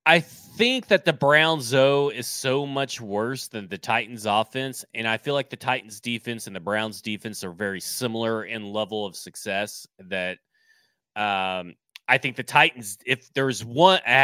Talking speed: 175 wpm